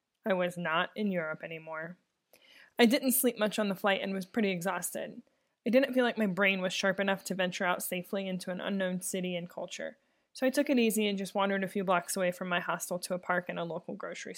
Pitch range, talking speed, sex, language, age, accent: 185-225 Hz, 240 wpm, female, English, 20-39, American